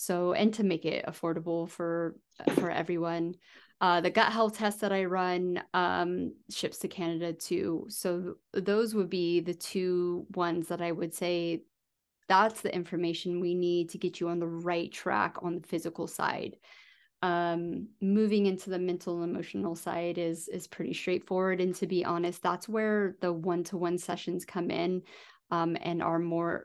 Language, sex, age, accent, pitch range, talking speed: English, female, 30-49, American, 175-190 Hz, 180 wpm